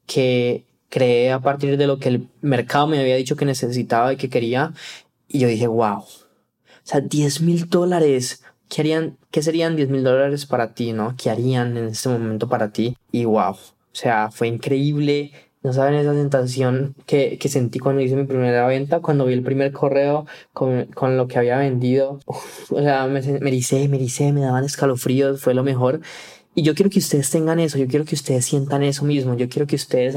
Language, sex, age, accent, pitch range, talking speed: Spanish, male, 20-39, Colombian, 125-140 Hz, 205 wpm